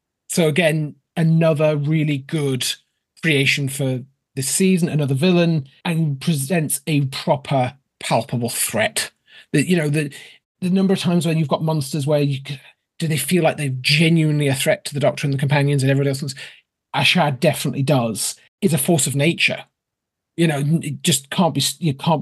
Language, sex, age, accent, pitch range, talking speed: English, male, 30-49, British, 140-170 Hz, 175 wpm